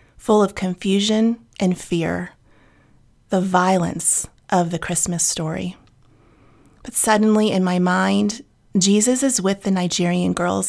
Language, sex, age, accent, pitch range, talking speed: English, female, 30-49, American, 180-200 Hz, 125 wpm